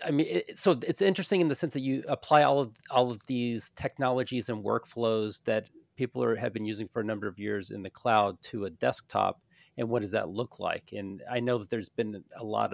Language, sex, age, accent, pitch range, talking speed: English, male, 40-59, American, 105-140 Hz, 240 wpm